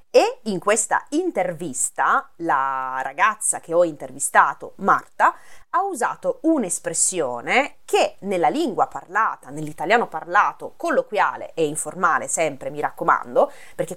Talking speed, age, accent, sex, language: 110 wpm, 30-49, native, female, Italian